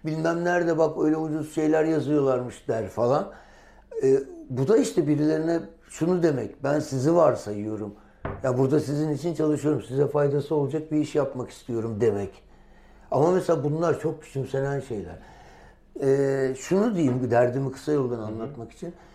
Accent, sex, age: native, male, 60-79